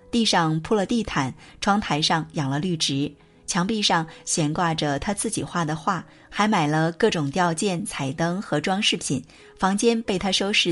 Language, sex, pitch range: Chinese, female, 145-200 Hz